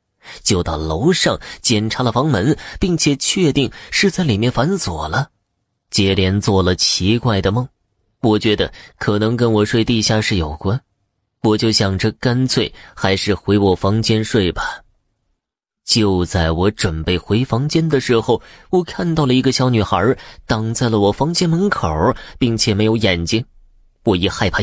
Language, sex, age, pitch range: Chinese, male, 20-39, 95-130 Hz